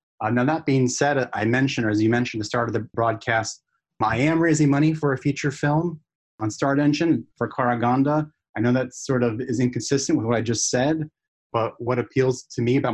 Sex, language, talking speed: male, English, 220 wpm